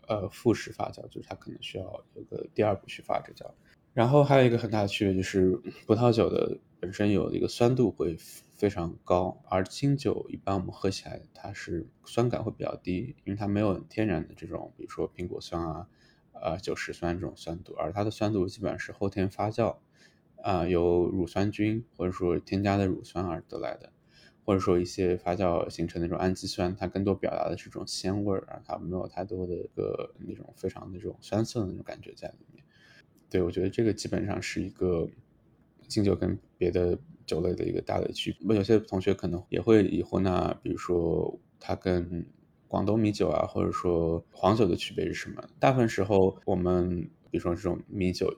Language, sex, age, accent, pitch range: Chinese, male, 20-39, native, 90-105 Hz